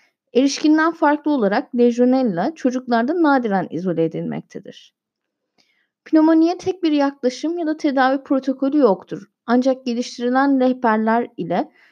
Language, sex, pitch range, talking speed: Turkish, female, 205-275 Hz, 105 wpm